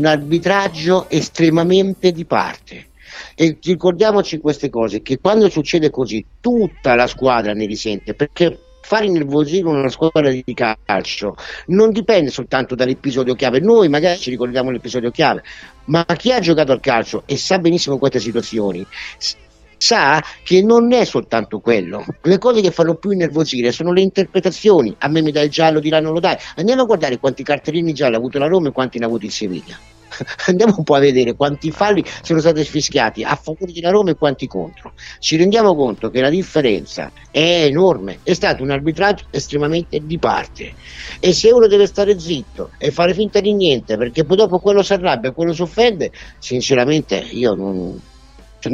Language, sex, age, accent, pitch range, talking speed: Italian, male, 50-69, native, 125-180 Hz, 180 wpm